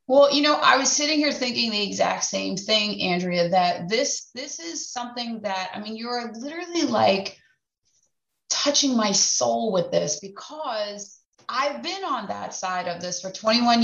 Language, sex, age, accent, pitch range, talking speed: English, female, 20-39, American, 195-265 Hz, 170 wpm